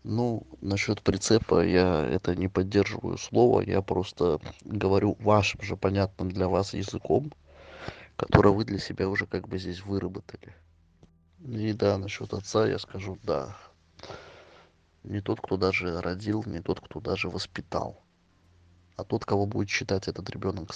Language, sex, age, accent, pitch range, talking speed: Russian, male, 20-39, native, 90-105 Hz, 145 wpm